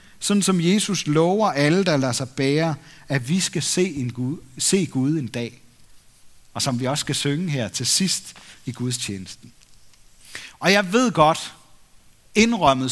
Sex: male